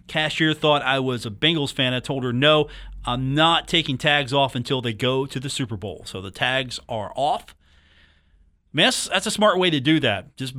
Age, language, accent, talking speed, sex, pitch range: 40-59, English, American, 225 wpm, male, 115-160 Hz